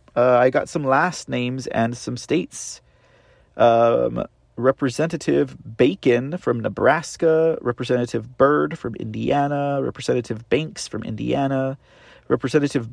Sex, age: male, 30-49